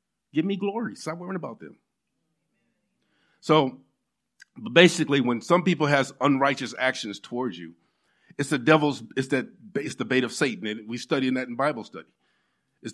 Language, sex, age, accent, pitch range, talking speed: English, male, 50-69, American, 130-180 Hz, 160 wpm